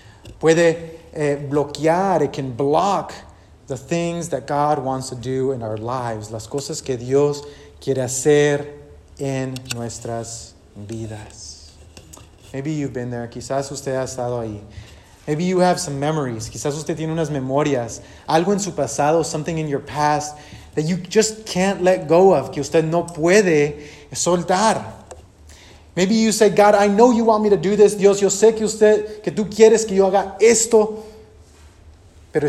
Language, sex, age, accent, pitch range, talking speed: English, male, 30-49, Mexican, 110-155 Hz, 165 wpm